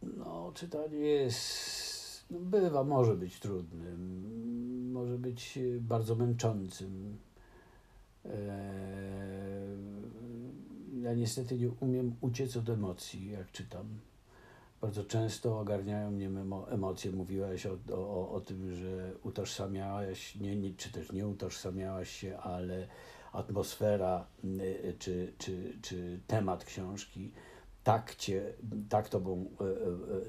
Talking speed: 100 wpm